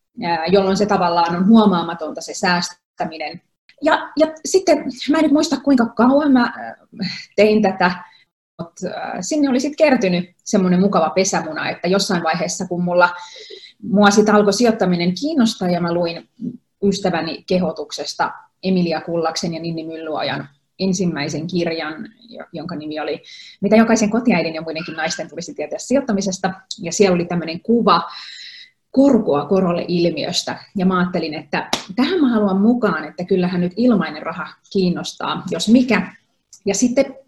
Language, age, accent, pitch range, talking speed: Finnish, 30-49, native, 170-225 Hz, 135 wpm